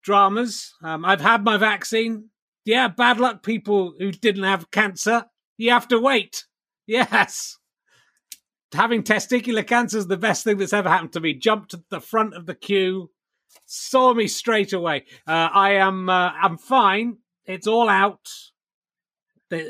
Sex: male